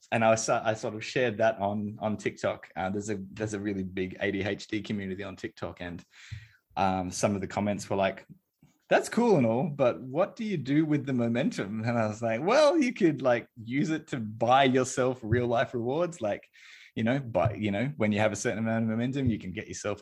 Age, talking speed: 20-39, 230 wpm